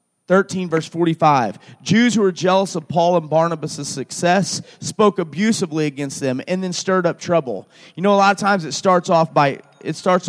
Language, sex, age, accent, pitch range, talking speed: English, male, 30-49, American, 150-190 Hz, 195 wpm